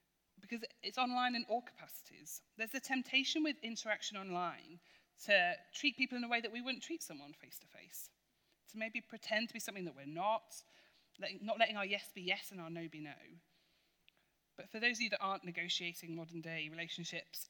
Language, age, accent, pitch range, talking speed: English, 30-49, British, 160-215 Hz, 190 wpm